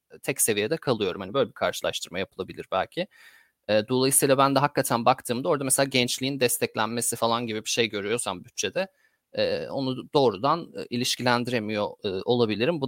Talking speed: 135 wpm